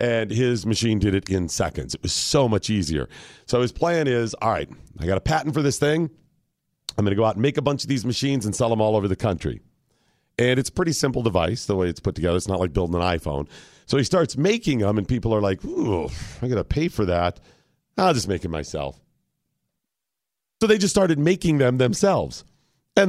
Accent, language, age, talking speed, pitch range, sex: American, English, 40-59, 235 wpm, 110-150 Hz, male